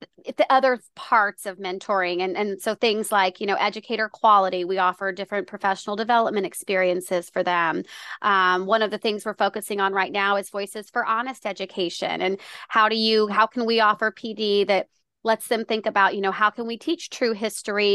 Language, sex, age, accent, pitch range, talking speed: English, female, 30-49, American, 195-230 Hz, 195 wpm